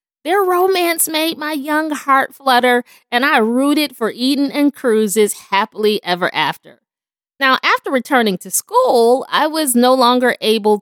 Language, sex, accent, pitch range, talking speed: English, female, American, 195-290 Hz, 150 wpm